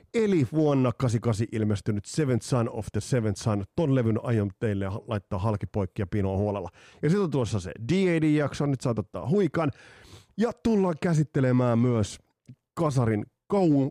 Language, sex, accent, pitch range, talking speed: Finnish, male, native, 105-155 Hz, 145 wpm